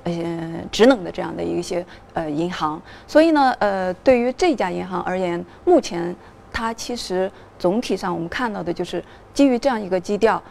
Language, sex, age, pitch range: Chinese, female, 20-39, 180-235 Hz